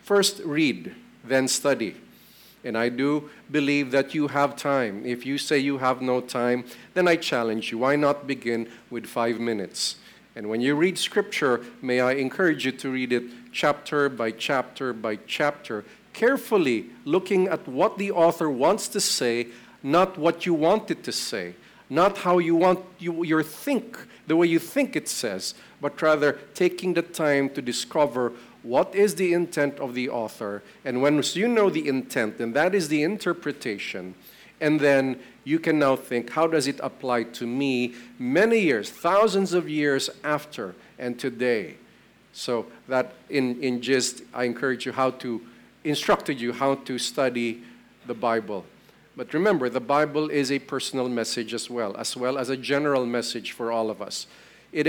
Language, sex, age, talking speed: English, male, 50-69, 170 wpm